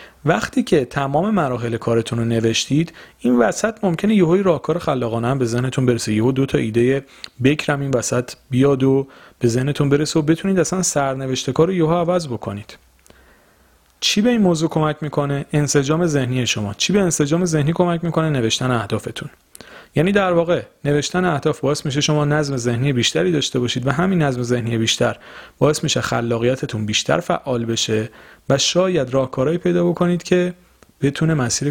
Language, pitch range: Persian, 120-160 Hz